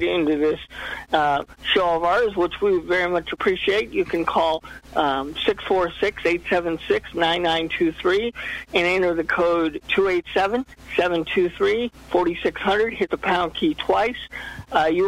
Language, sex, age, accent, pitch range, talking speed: English, male, 50-69, American, 165-220 Hz, 150 wpm